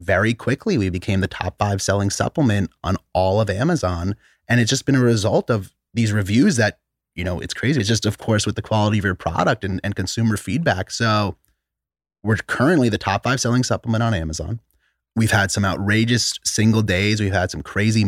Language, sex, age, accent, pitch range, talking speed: English, male, 30-49, American, 95-110 Hz, 205 wpm